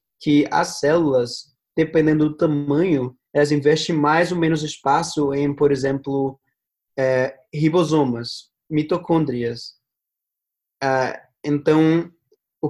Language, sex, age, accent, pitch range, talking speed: Portuguese, male, 20-39, Brazilian, 140-160 Hz, 90 wpm